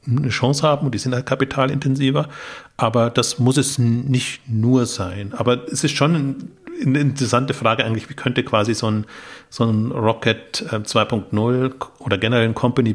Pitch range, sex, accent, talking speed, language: 105-125 Hz, male, German, 165 wpm, German